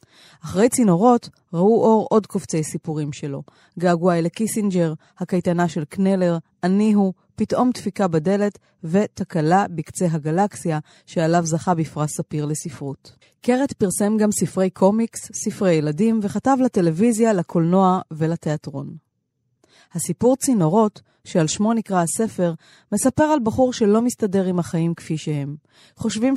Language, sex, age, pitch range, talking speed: Hebrew, female, 30-49, 155-205 Hz, 125 wpm